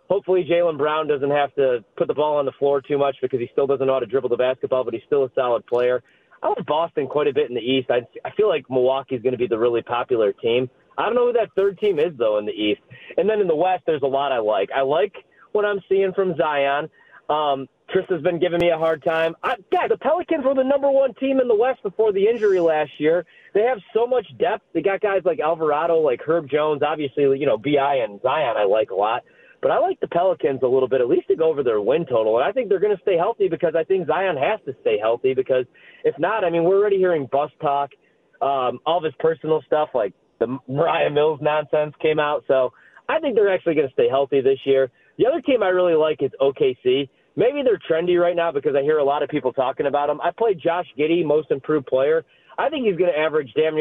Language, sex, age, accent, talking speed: English, male, 30-49, American, 255 wpm